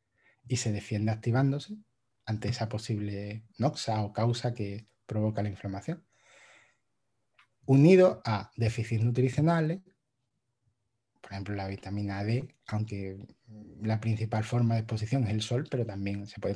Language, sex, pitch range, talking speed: Spanish, male, 110-130 Hz, 130 wpm